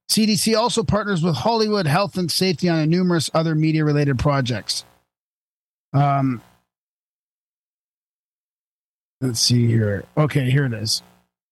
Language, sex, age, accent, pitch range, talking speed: English, male, 40-59, American, 130-175 Hz, 110 wpm